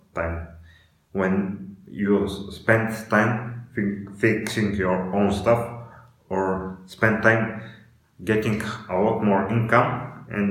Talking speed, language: 110 wpm, English